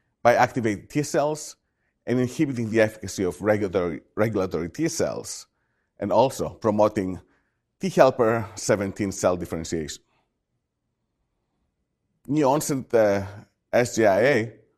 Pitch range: 95-120 Hz